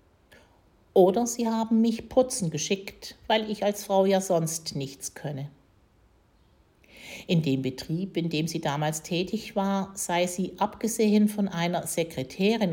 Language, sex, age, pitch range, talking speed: German, female, 50-69, 155-200 Hz, 135 wpm